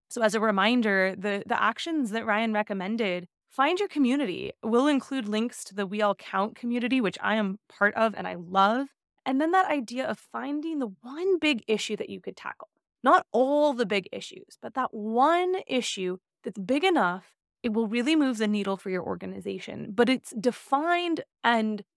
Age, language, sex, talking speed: 20-39, English, female, 190 wpm